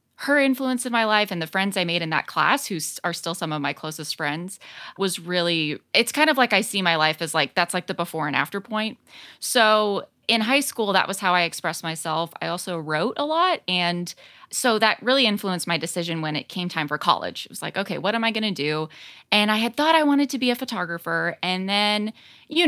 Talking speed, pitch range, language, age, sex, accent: 240 wpm, 170-225 Hz, English, 20-39, female, American